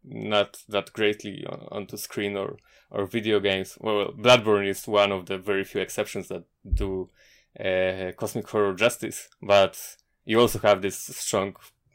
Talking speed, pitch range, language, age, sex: 155 wpm, 95-120 Hz, English, 20-39, male